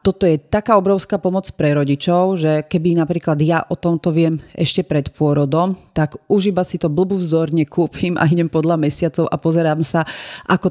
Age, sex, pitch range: 30-49, female, 150-175 Hz